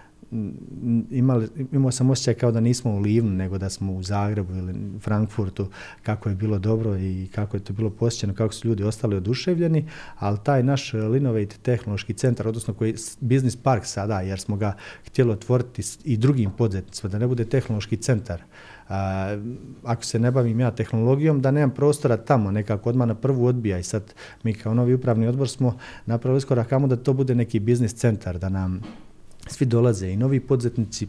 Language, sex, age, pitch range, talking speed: Croatian, male, 40-59, 100-120 Hz, 180 wpm